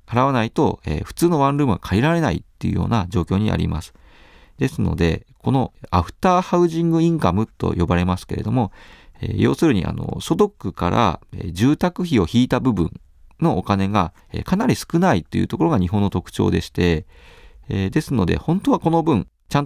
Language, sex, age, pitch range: Japanese, male, 40-59, 90-145 Hz